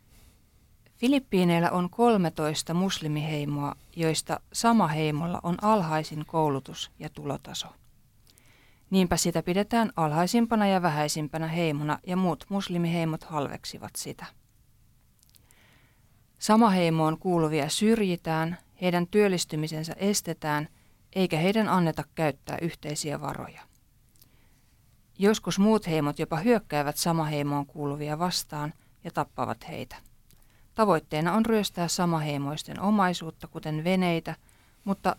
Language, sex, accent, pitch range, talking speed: Finnish, female, native, 145-180 Hz, 95 wpm